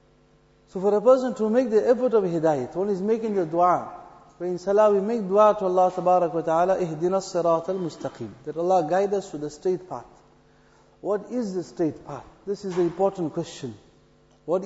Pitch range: 170-210 Hz